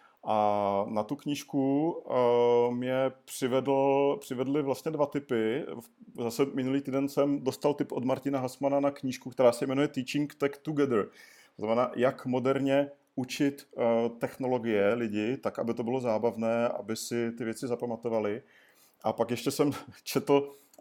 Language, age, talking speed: Czech, 40-59, 135 wpm